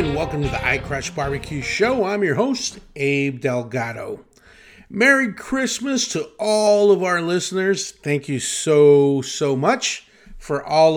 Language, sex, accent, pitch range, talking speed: English, male, American, 130-195 Hz, 140 wpm